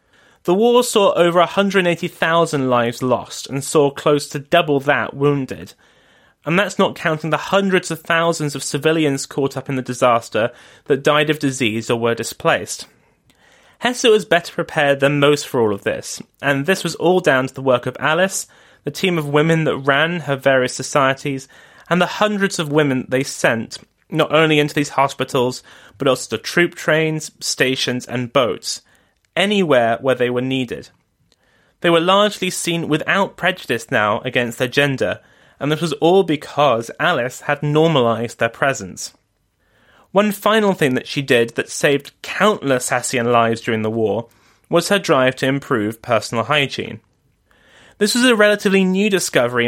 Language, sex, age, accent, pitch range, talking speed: English, male, 30-49, British, 130-170 Hz, 165 wpm